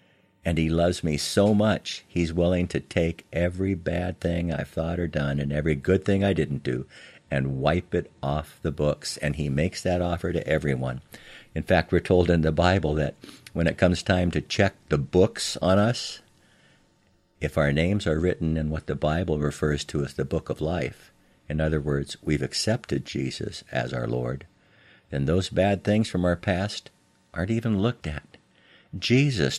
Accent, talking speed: American, 185 wpm